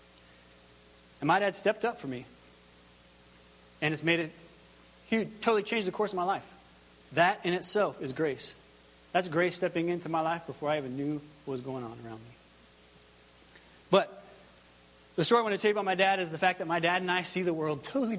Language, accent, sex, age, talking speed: English, American, male, 30-49, 210 wpm